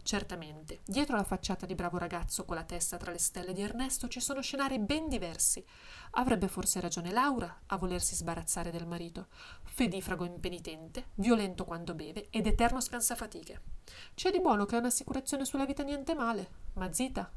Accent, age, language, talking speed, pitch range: native, 20-39, Italian, 175 wpm, 185-240 Hz